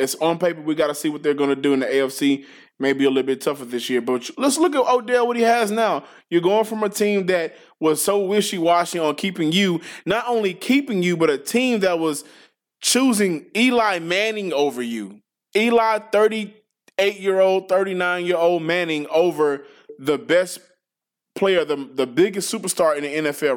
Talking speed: 195 wpm